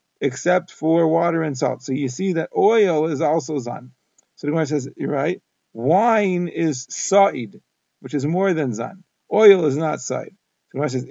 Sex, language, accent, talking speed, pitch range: male, English, American, 185 wpm, 150-175 Hz